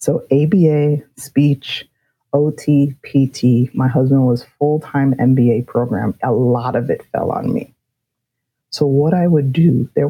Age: 30-49